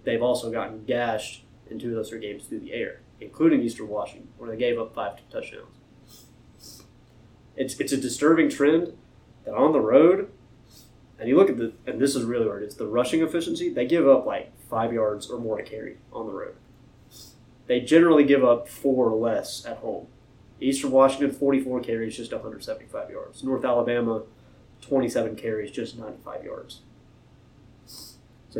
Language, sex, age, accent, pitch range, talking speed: English, male, 20-39, American, 115-145 Hz, 170 wpm